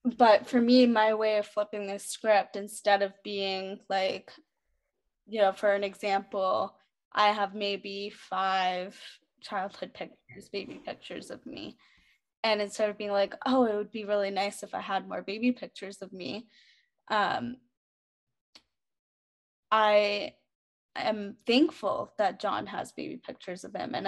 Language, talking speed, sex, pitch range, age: English, 145 wpm, female, 200-230 Hz, 10-29